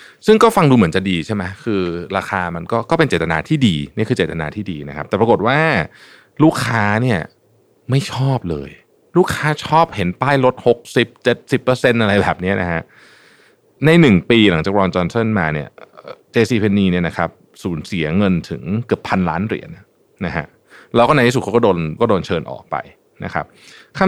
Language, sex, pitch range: Thai, male, 85-125 Hz